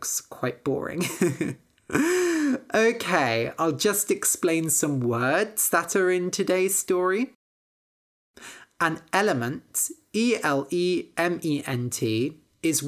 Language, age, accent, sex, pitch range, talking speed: English, 30-49, British, male, 135-210 Hz, 80 wpm